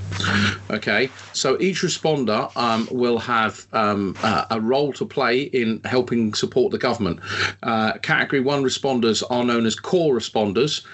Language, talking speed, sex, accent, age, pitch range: English, 150 wpm, male, British, 40-59, 110-135 Hz